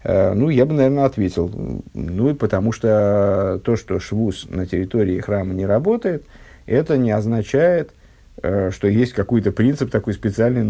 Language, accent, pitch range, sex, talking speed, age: Russian, native, 100-125 Hz, male, 145 wpm, 50-69